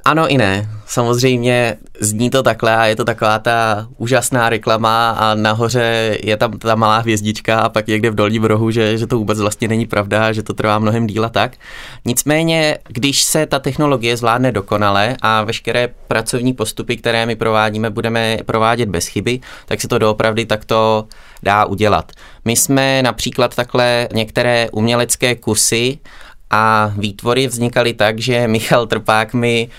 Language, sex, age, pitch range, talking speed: Czech, male, 20-39, 105-115 Hz, 160 wpm